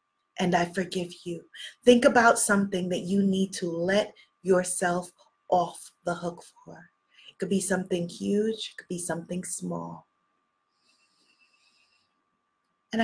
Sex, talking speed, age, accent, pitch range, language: female, 130 wpm, 20-39, American, 160-220 Hz, English